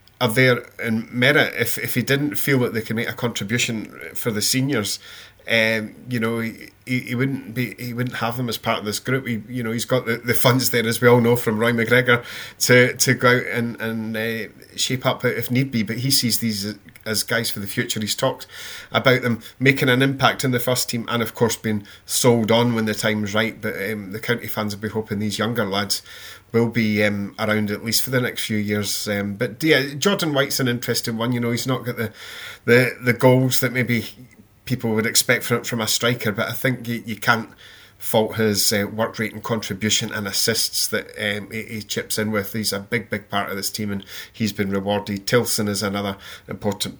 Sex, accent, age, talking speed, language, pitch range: male, British, 30-49, 230 wpm, English, 110-125 Hz